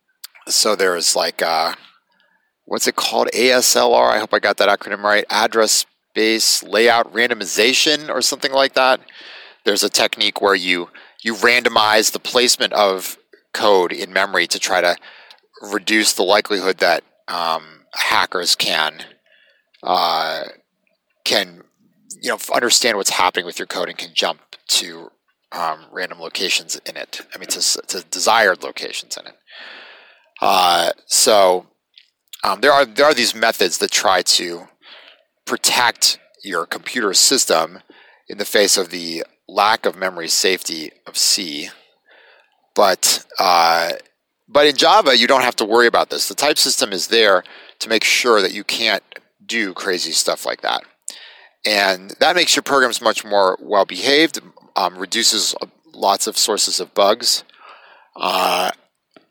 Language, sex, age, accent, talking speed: English, male, 30-49, American, 145 wpm